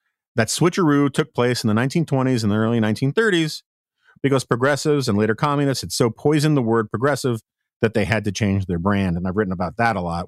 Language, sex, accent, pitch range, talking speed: English, male, American, 110-155 Hz, 210 wpm